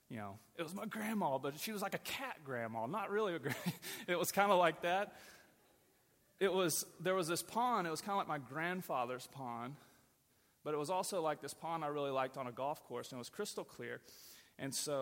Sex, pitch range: male, 125-165 Hz